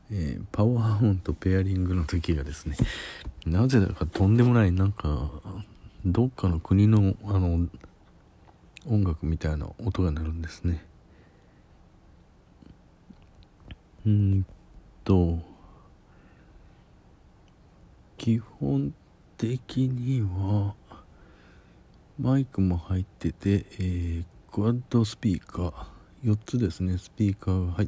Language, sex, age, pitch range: Japanese, male, 50-69, 85-105 Hz